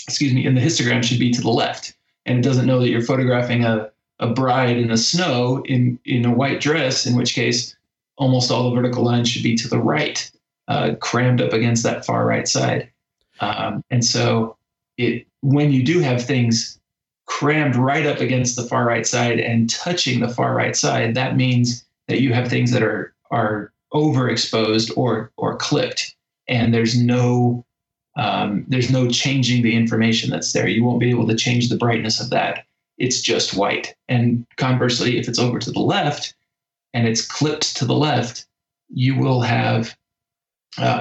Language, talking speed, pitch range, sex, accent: English, 185 wpm, 120-130 Hz, male, American